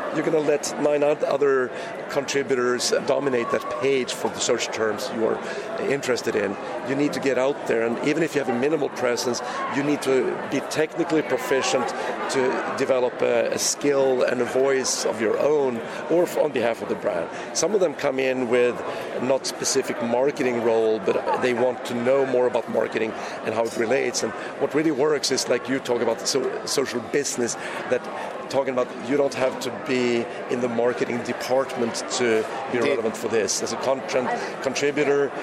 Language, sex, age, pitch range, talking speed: English, male, 40-59, 125-140 Hz, 185 wpm